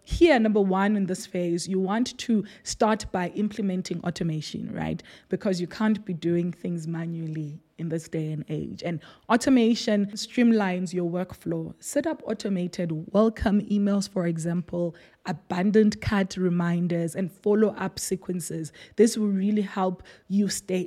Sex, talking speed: female, 145 wpm